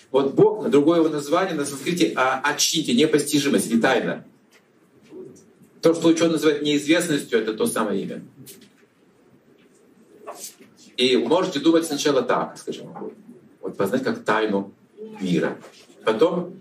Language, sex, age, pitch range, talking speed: Russian, male, 40-59, 140-170 Hz, 125 wpm